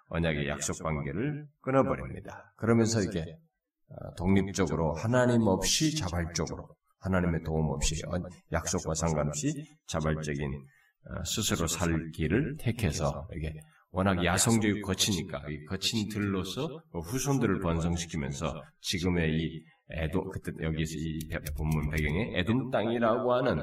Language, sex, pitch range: Korean, male, 80-130 Hz